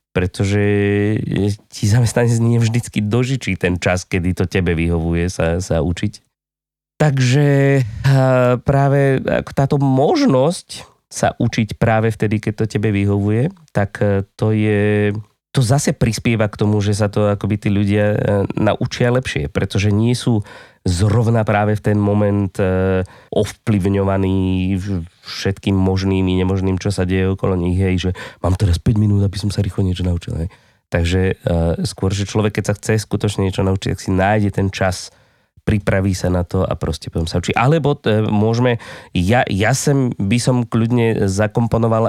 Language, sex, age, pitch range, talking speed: Slovak, male, 20-39, 95-120 Hz, 155 wpm